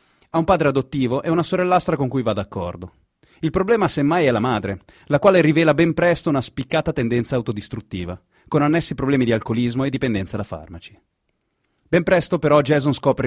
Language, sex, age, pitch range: Italian, male, 30-49, 105-150 Hz